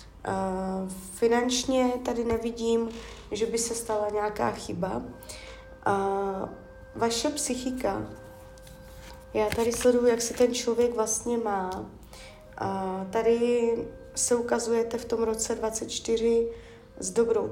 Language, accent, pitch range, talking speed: Czech, native, 200-235 Hz, 110 wpm